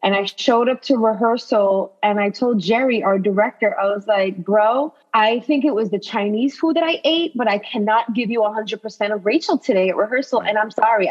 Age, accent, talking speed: 20-39, American, 225 wpm